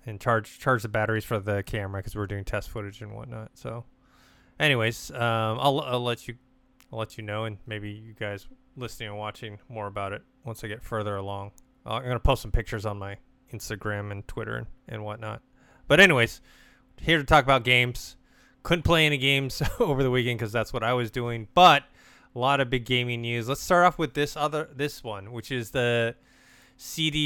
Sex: male